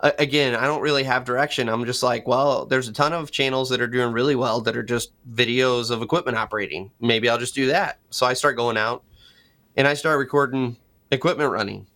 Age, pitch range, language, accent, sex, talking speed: 20-39, 115-140 Hz, English, American, male, 215 wpm